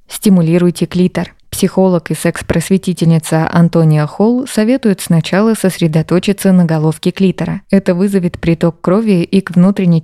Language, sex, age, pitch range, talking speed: Russian, female, 20-39, 165-190 Hz, 120 wpm